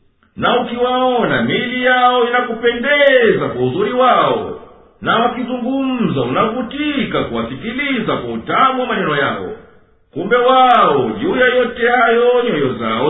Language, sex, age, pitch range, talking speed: Swahili, male, 50-69, 225-255 Hz, 110 wpm